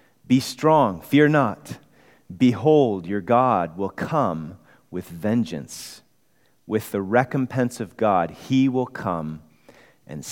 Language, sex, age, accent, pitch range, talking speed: English, male, 40-59, American, 100-130 Hz, 115 wpm